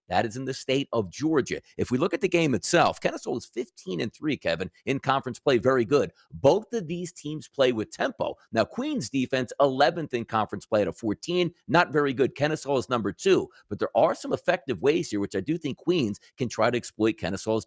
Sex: male